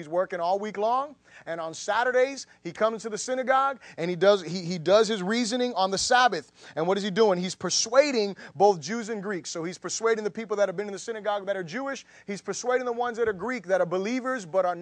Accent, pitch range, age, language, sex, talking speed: American, 180-225 Hz, 30-49, English, male, 245 wpm